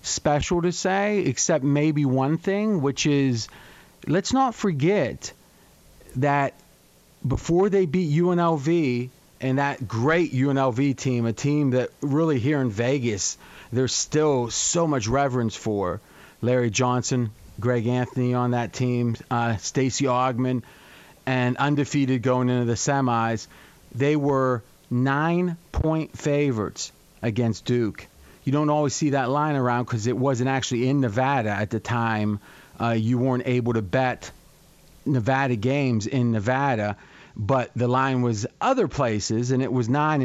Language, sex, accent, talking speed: English, male, American, 140 wpm